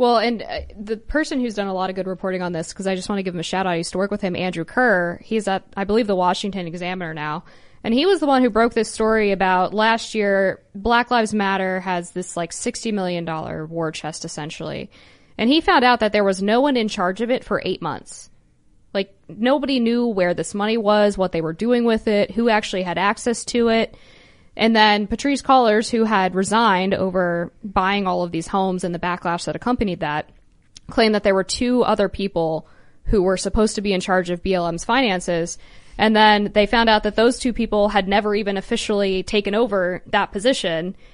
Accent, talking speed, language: American, 220 wpm, English